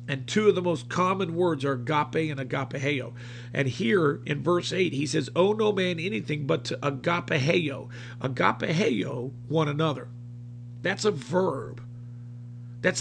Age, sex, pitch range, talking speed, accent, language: 50-69, male, 120-165 Hz, 150 wpm, American, English